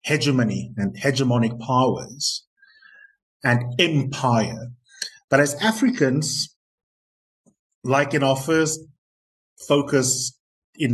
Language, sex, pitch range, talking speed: English, male, 125-175 Hz, 80 wpm